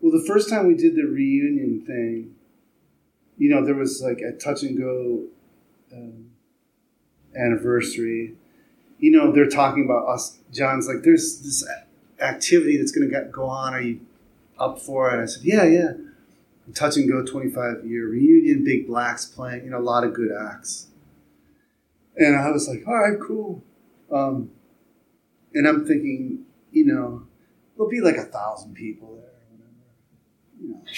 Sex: male